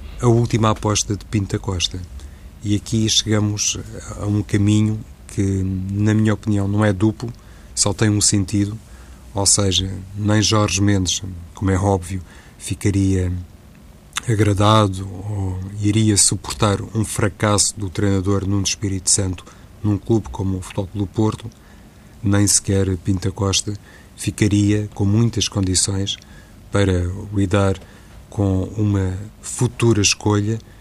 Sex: male